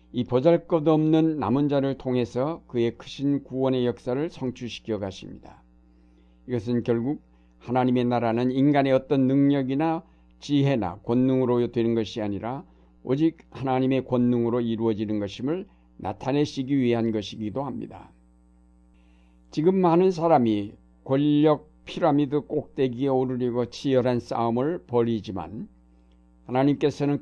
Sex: male